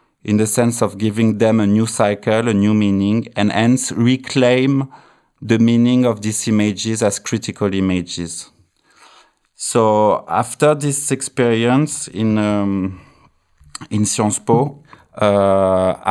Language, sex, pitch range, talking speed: English, male, 100-120 Hz, 125 wpm